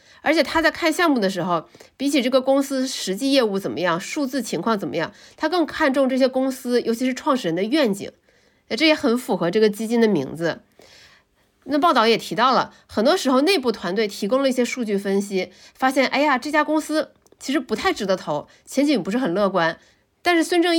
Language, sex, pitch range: Chinese, female, 190-290 Hz